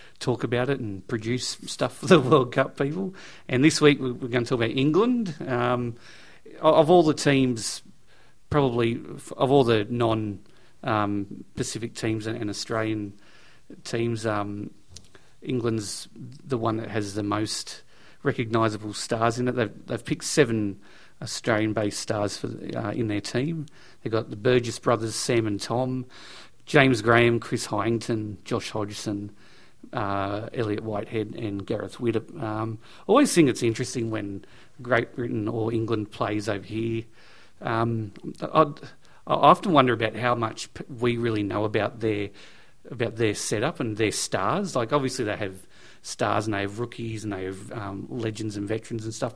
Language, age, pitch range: English, 40-59, 105-130 Hz